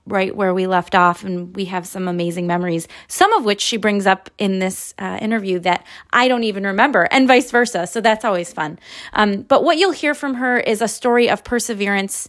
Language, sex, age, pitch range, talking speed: English, female, 30-49, 180-220 Hz, 220 wpm